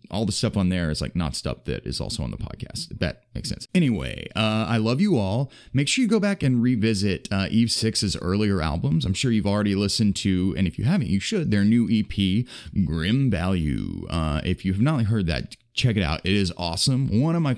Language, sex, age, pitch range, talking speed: English, male, 30-49, 90-125 Hz, 235 wpm